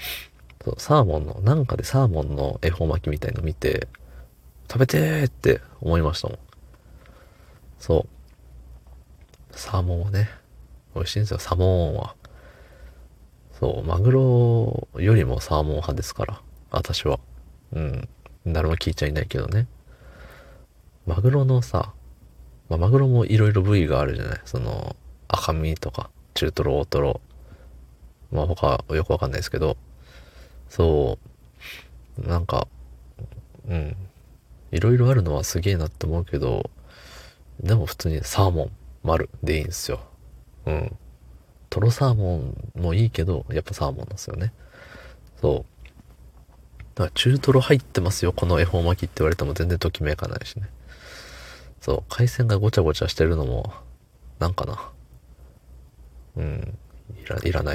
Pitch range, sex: 65-105 Hz, male